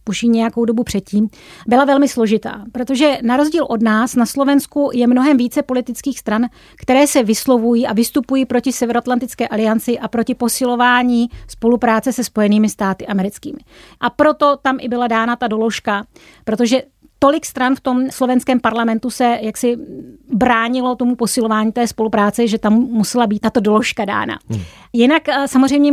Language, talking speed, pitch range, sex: Czech, 155 wpm, 225-265 Hz, female